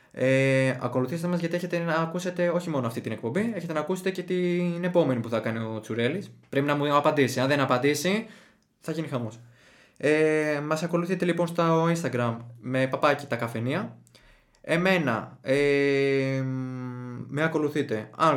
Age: 20-39